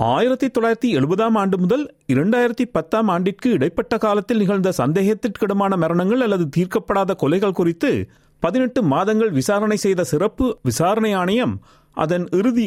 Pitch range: 145-230 Hz